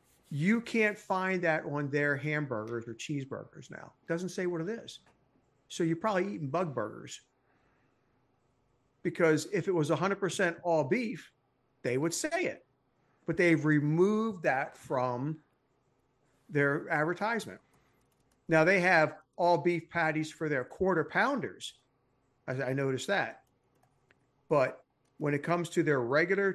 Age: 50-69